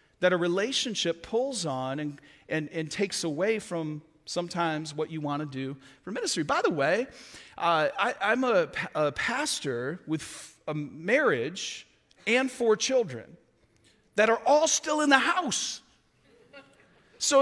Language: English